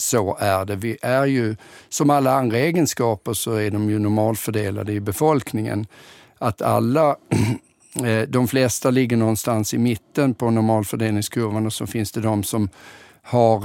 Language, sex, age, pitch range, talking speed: Swedish, male, 50-69, 105-125 Hz, 150 wpm